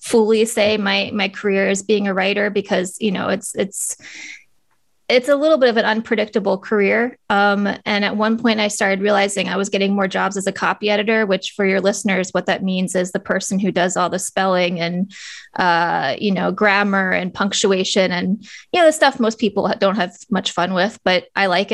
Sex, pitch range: female, 190-220 Hz